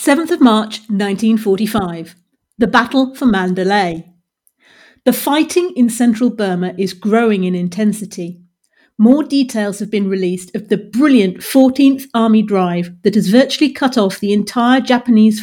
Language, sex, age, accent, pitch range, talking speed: English, female, 40-59, British, 190-250 Hz, 140 wpm